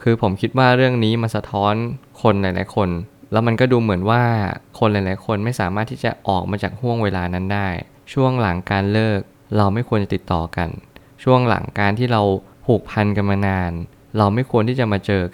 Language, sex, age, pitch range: Thai, male, 20-39, 100-120 Hz